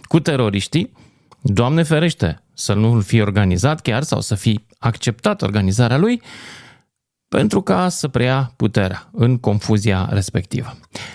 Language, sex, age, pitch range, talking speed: Romanian, male, 30-49, 110-160 Hz, 125 wpm